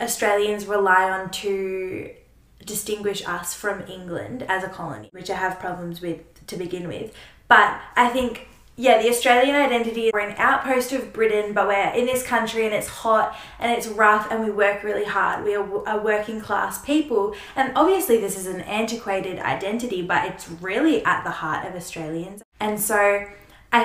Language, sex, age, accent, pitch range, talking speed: English, female, 10-29, Australian, 190-225 Hz, 180 wpm